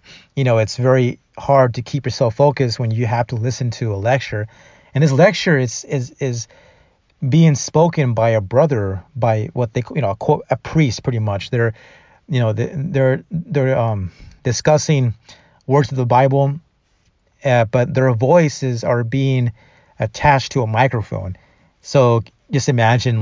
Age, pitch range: 30-49, 110-140 Hz